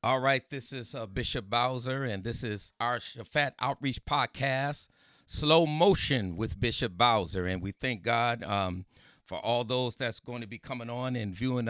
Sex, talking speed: male, 180 wpm